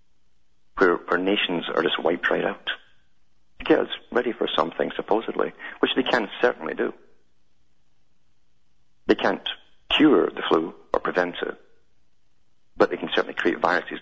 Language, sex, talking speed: English, male, 135 wpm